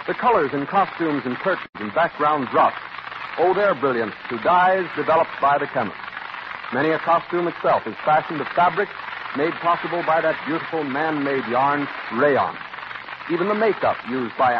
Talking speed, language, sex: 160 wpm, English, male